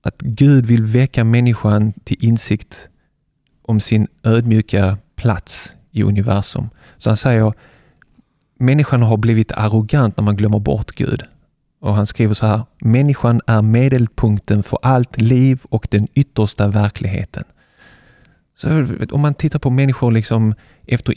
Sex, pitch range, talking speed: male, 105-130 Hz, 135 wpm